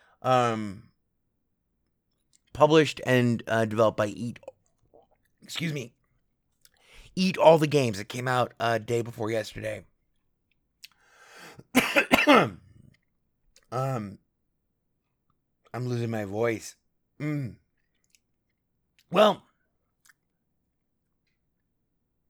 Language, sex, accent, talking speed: English, male, American, 75 wpm